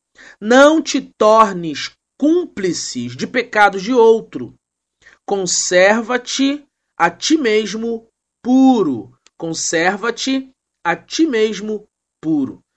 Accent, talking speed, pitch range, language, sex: Brazilian, 85 wpm, 195-265 Hz, Portuguese, male